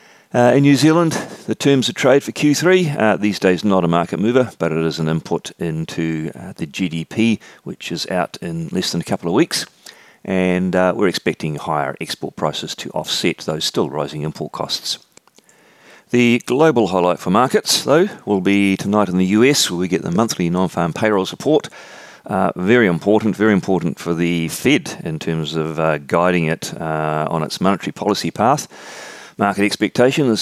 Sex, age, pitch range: male, 40-59, 80-110 Hz